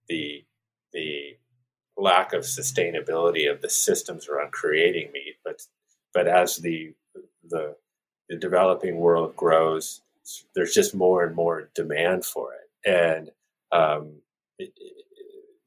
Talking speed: 125 wpm